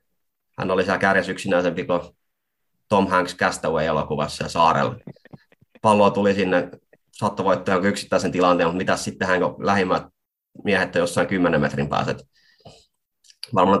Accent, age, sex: native, 30-49, male